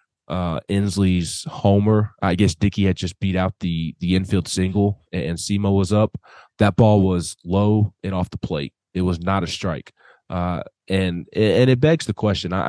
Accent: American